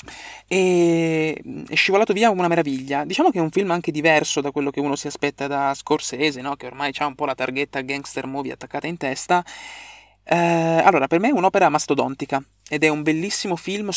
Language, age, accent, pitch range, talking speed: Italian, 20-39, native, 135-170 Hz, 200 wpm